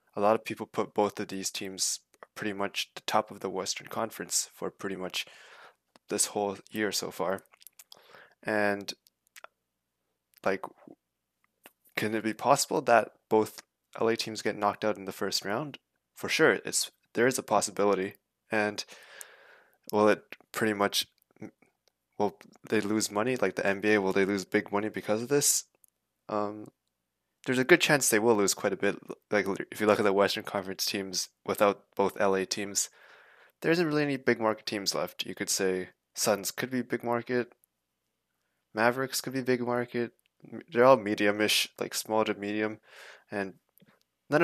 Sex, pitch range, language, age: male, 100-120 Hz, English, 20-39